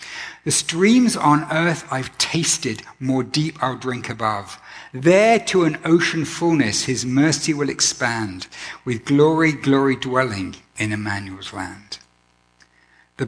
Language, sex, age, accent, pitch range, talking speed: English, male, 60-79, British, 110-160 Hz, 125 wpm